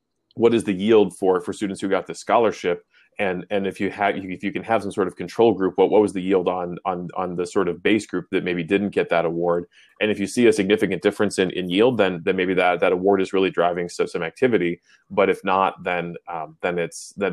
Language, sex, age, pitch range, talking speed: English, male, 20-39, 90-105 Hz, 255 wpm